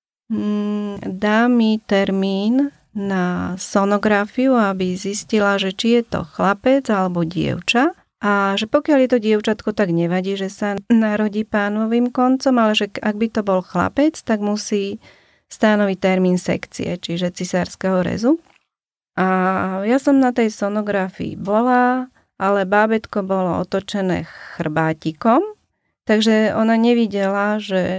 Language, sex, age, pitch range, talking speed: Slovak, female, 30-49, 190-225 Hz, 125 wpm